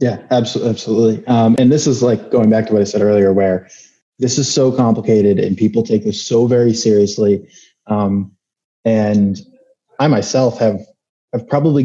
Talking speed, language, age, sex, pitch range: 165 wpm, English, 20-39, male, 110-135 Hz